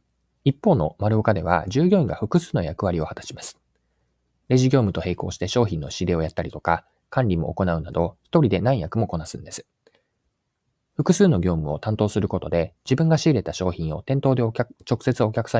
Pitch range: 85-135 Hz